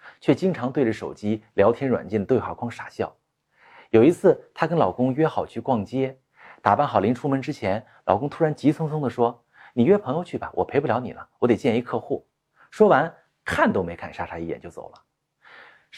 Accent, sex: native, male